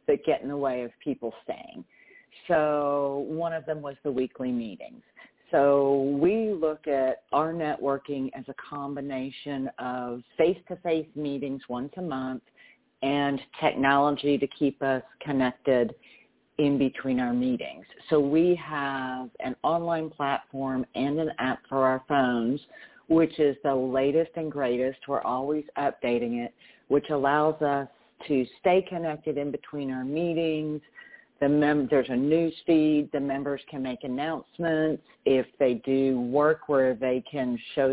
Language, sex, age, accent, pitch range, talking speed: English, female, 40-59, American, 135-155 Hz, 145 wpm